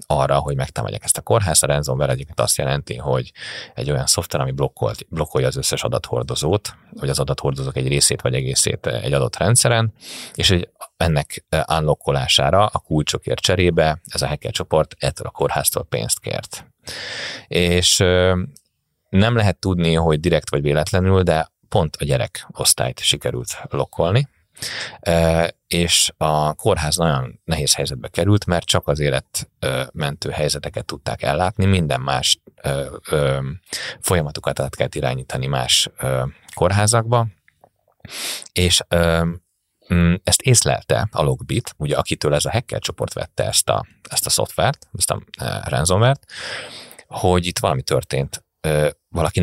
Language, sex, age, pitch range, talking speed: Hungarian, male, 30-49, 70-95 Hz, 130 wpm